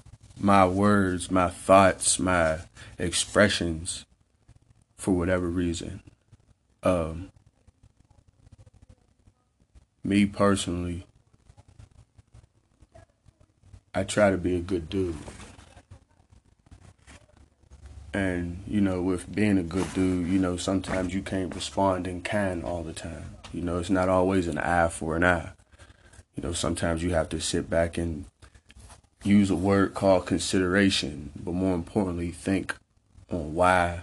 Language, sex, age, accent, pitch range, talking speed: English, male, 30-49, American, 90-100 Hz, 120 wpm